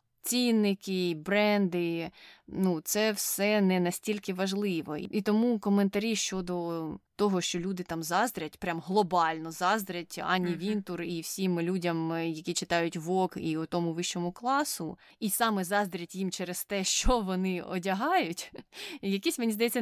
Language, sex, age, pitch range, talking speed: Ukrainian, female, 20-39, 170-210 Hz, 135 wpm